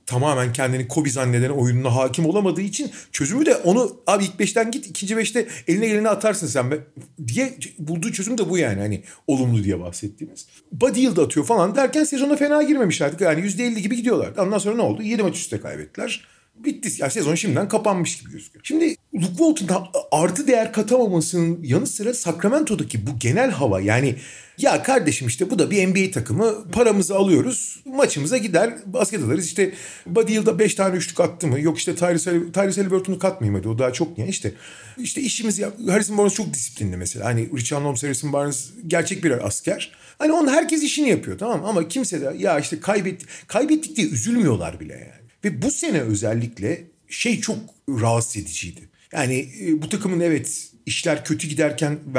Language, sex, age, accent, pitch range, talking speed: Turkish, male, 40-59, native, 135-220 Hz, 175 wpm